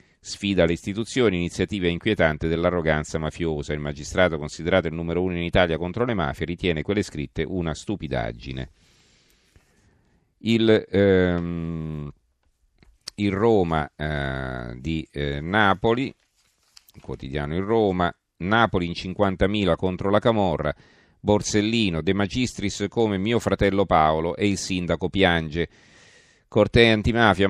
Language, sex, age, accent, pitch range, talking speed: Italian, male, 40-59, native, 85-105 Hz, 120 wpm